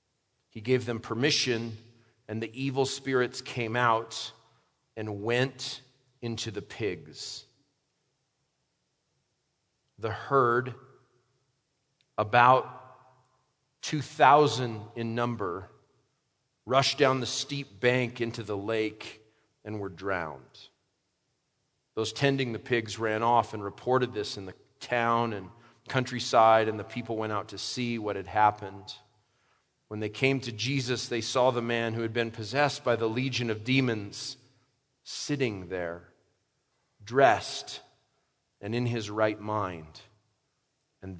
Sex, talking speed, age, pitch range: male, 120 wpm, 40-59, 110-135 Hz